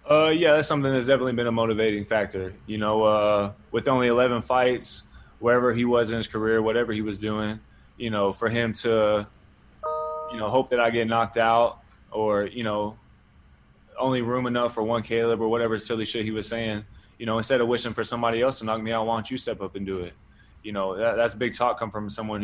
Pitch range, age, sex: 105-115 Hz, 20-39, male